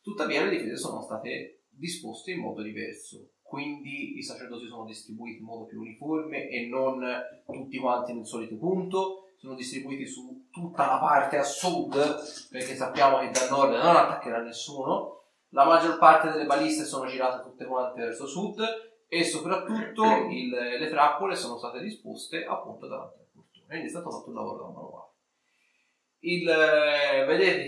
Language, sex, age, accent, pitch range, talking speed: Italian, male, 30-49, native, 130-205 Hz, 160 wpm